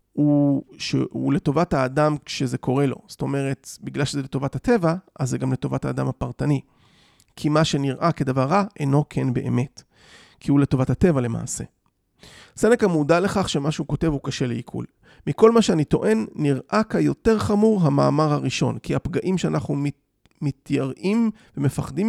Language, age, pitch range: Hebrew, 30-49, 135-170 Hz